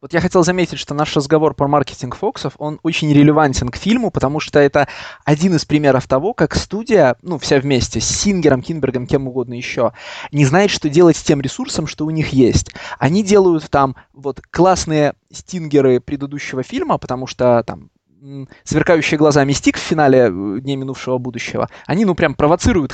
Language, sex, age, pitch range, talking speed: Russian, male, 20-39, 140-195 Hz, 175 wpm